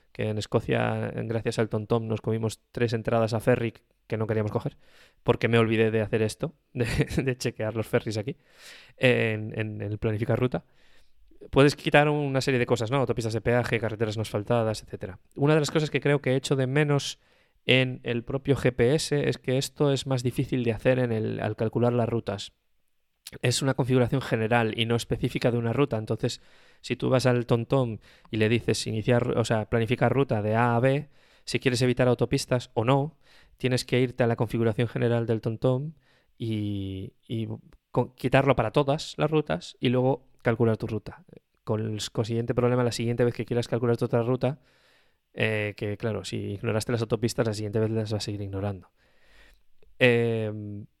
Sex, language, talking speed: male, Spanish, 190 wpm